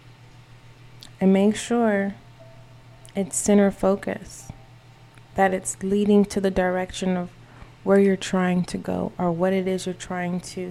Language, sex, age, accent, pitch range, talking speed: English, female, 20-39, American, 125-195 Hz, 140 wpm